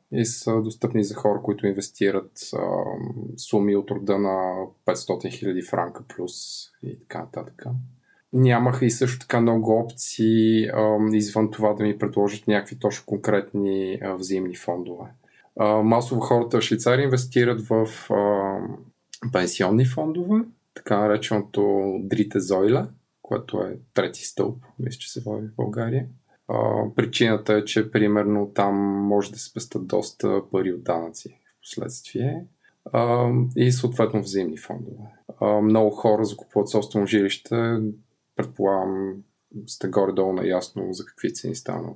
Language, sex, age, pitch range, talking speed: Bulgarian, male, 20-39, 100-115 Hz, 135 wpm